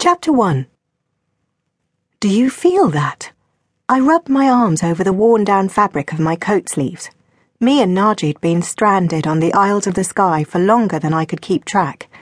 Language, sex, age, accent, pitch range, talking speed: English, female, 40-59, British, 160-220 Hz, 180 wpm